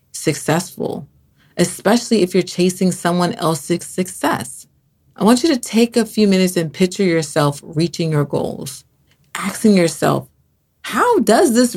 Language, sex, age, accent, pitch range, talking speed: English, female, 30-49, American, 175-230 Hz, 140 wpm